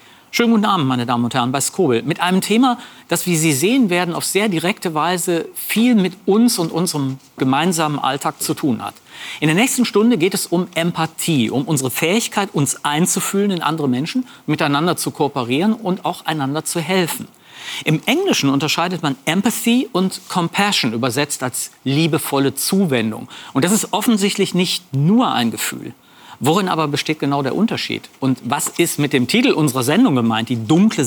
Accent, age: German, 40-59